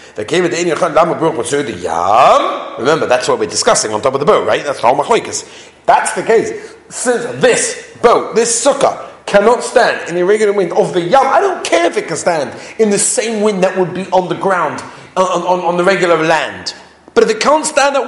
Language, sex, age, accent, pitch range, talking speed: English, male, 40-59, British, 165-240 Hz, 195 wpm